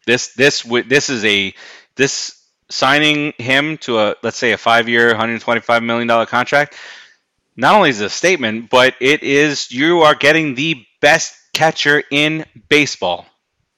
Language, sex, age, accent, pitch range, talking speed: English, male, 30-49, American, 120-155 Hz, 150 wpm